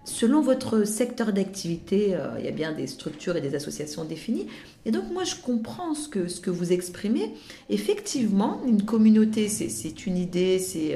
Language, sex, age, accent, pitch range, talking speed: French, female, 40-59, French, 180-235 Hz, 185 wpm